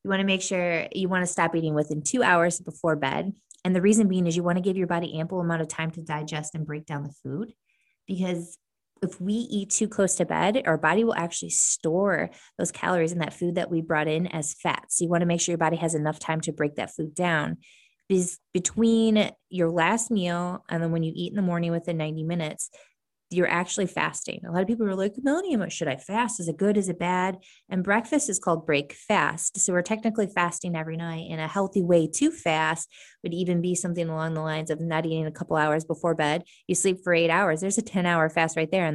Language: English